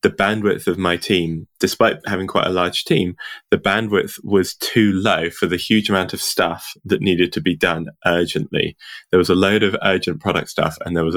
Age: 20-39